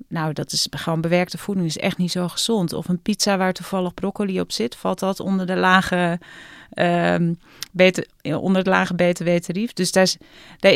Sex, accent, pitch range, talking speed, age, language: female, Dutch, 165-185 Hz, 160 wpm, 30-49, Dutch